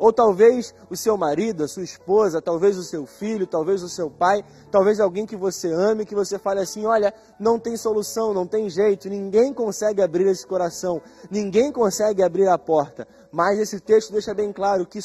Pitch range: 185-220 Hz